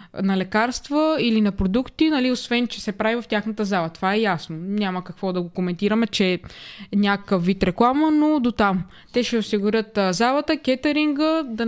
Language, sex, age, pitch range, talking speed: Bulgarian, female, 20-39, 200-245 Hz, 175 wpm